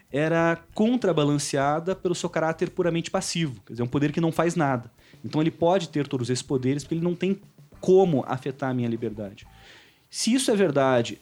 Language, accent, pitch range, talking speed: Portuguese, Brazilian, 130-195 Hz, 195 wpm